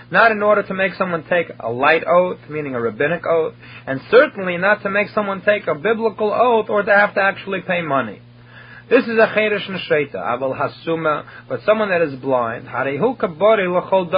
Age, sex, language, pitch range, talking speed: 30-49, male, English, 145-200 Hz, 180 wpm